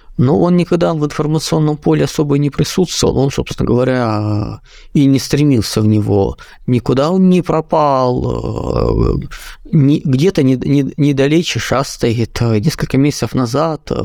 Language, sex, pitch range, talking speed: Russian, male, 115-155 Hz, 125 wpm